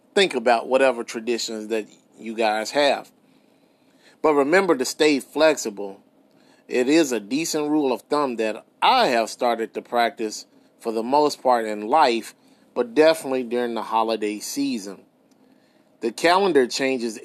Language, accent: English, American